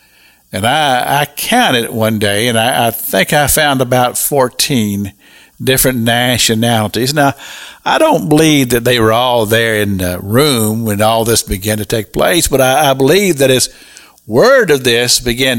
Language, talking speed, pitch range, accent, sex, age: English, 175 wpm, 105-150 Hz, American, male, 60-79